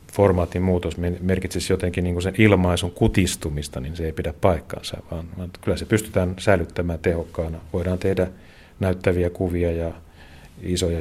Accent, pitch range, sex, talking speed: native, 85-95 Hz, male, 135 wpm